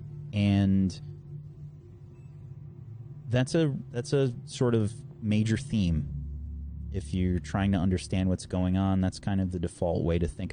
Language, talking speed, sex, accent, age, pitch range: English, 140 wpm, male, American, 30-49, 85-115 Hz